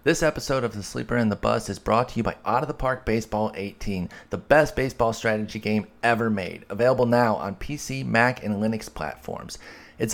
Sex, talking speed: male, 205 wpm